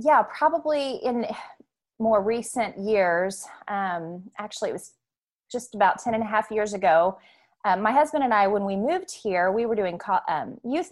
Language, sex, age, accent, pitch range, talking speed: English, female, 30-49, American, 180-225 Hz, 180 wpm